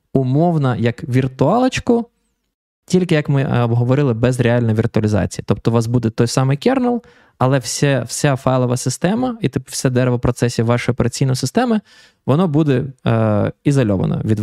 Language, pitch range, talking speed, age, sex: Ukrainian, 115-150 Hz, 135 wpm, 20-39, male